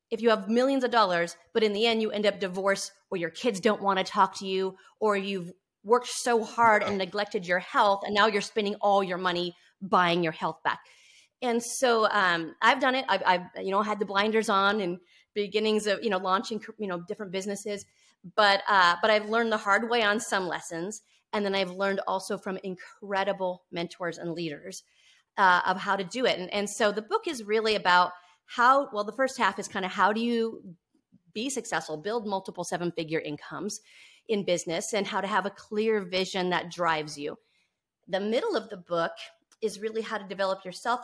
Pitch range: 180-215 Hz